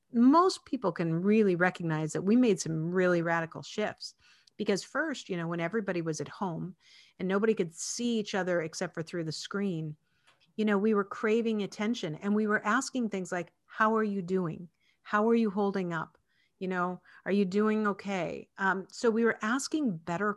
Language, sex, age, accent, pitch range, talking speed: English, female, 50-69, American, 185-240 Hz, 190 wpm